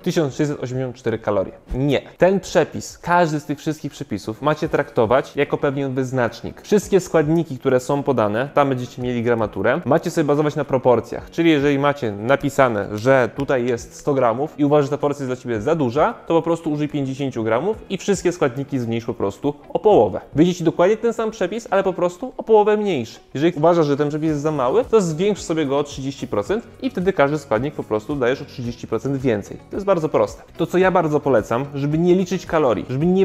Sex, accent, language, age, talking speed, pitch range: male, native, Polish, 20-39, 200 wpm, 130-170 Hz